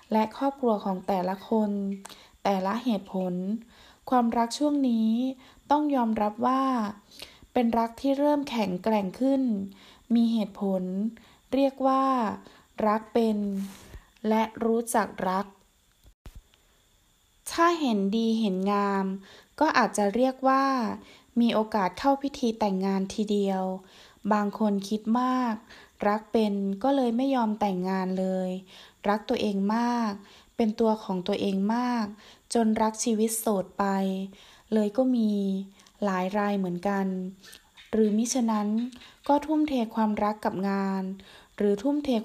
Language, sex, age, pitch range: Thai, female, 20-39, 200-245 Hz